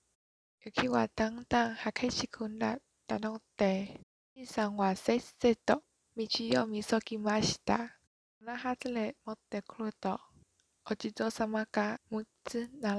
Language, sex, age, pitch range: Japanese, female, 20-39, 215-240 Hz